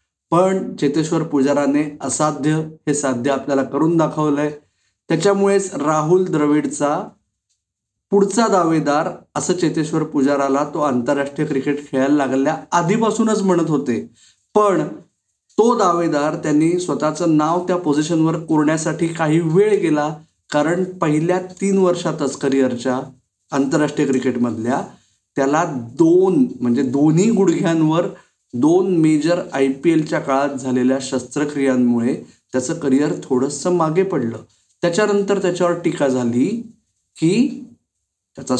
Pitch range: 130-170 Hz